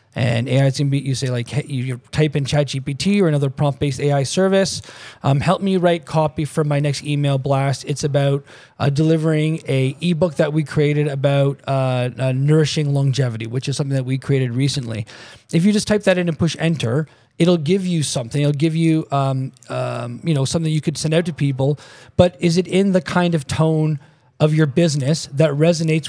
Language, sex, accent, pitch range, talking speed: English, male, American, 140-165 Hz, 205 wpm